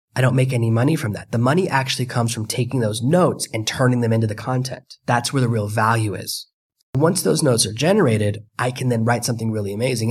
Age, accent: 30-49, American